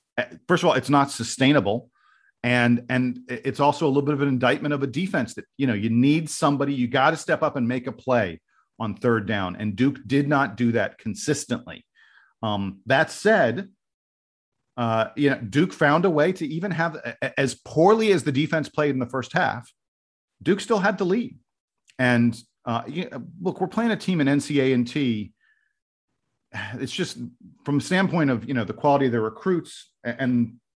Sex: male